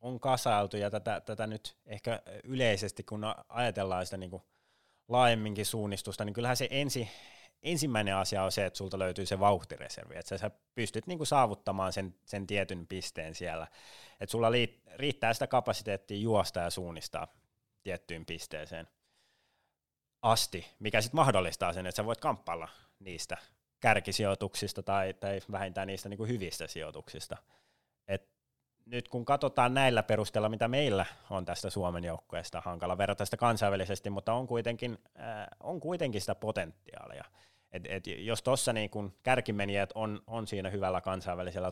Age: 20-39